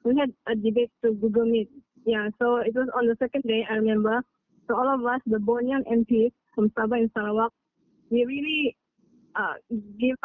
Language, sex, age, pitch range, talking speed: English, female, 20-39, 225-250 Hz, 185 wpm